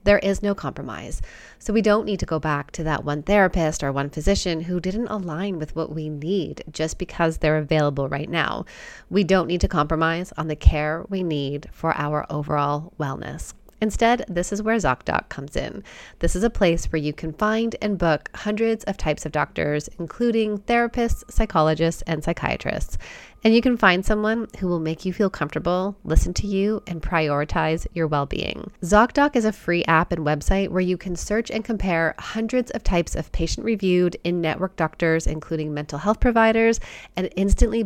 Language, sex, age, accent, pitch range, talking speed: English, female, 30-49, American, 155-205 Hz, 185 wpm